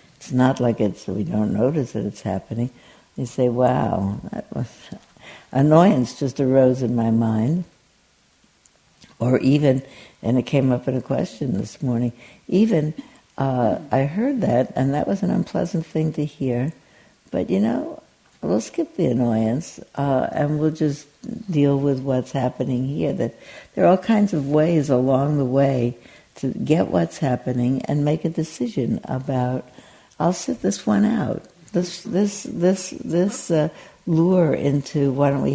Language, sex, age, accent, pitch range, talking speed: English, female, 60-79, American, 120-160 Hz, 160 wpm